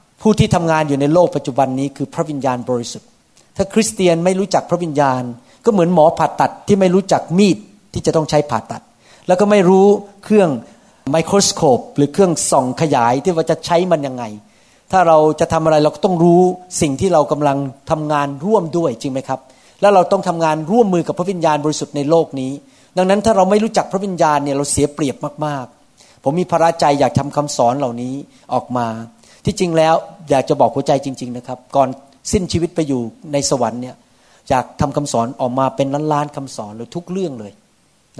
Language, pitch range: Thai, 130-170 Hz